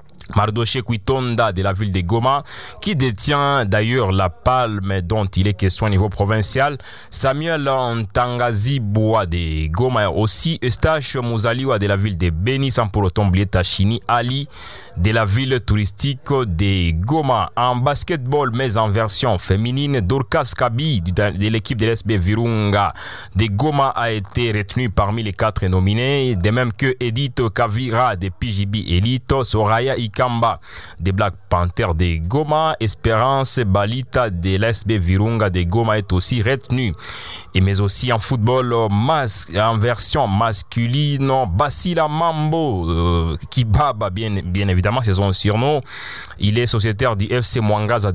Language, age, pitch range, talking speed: English, 30-49, 100-130 Hz, 140 wpm